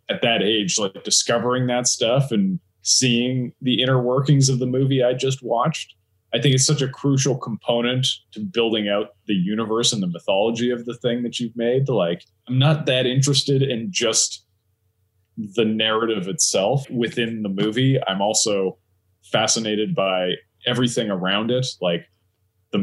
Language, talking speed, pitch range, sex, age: English, 160 wpm, 100-125 Hz, male, 20-39